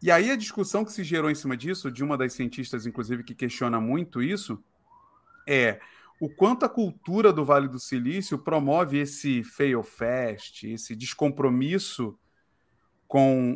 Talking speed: 155 wpm